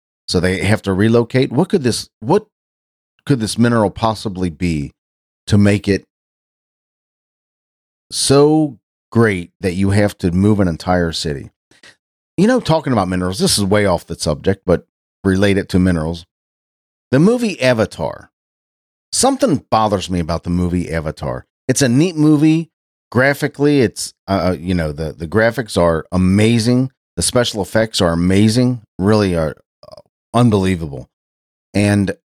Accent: American